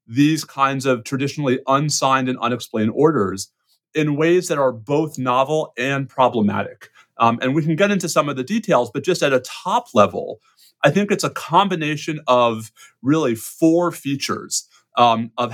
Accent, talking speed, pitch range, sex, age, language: American, 165 wpm, 120-150 Hz, male, 30-49, English